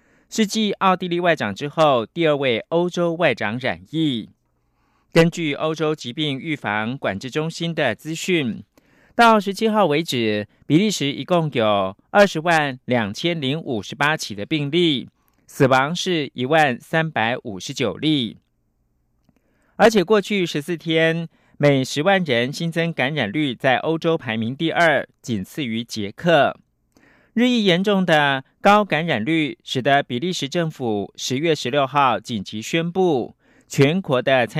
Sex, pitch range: male, 130-175 Hz